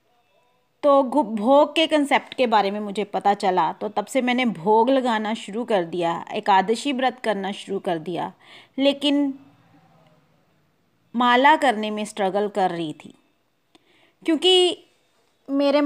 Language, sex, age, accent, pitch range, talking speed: Hindi, female, 30-49, native, 205-280 Hz, 130 wpm